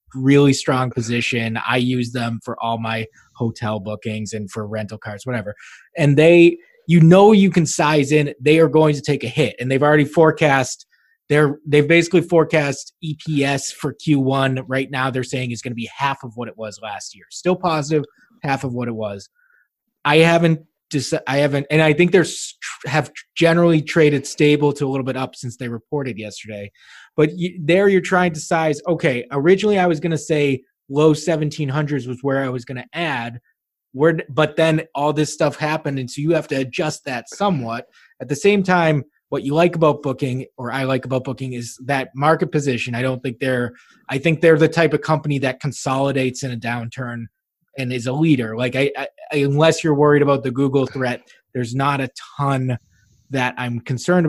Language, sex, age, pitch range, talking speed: English, male, 20-39, 125-155 Hz, 195 wpm